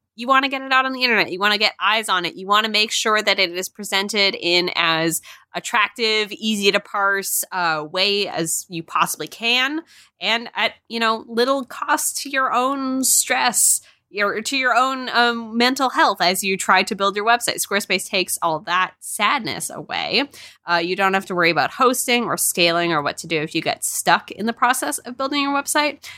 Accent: American